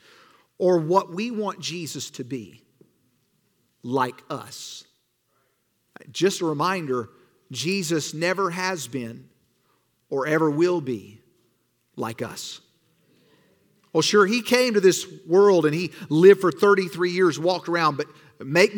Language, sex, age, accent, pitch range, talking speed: English, male, 50-69, American, 160-220 Hz, 125 wpm